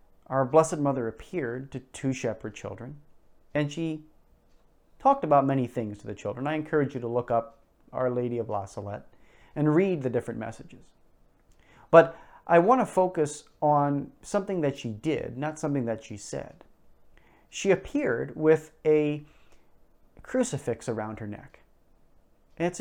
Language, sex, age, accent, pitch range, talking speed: English, male, 30-49, American, 115-155 Hz, 150 wpm